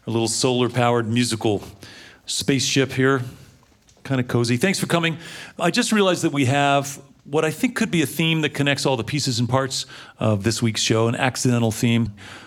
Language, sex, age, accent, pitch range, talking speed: English, male, 40-59, American, 110-140 Hz, 190 wpm